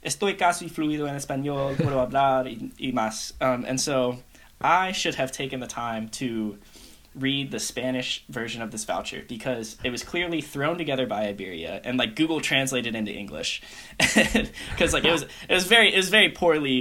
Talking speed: 185 wpm